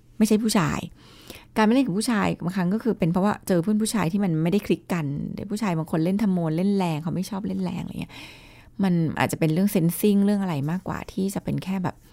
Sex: female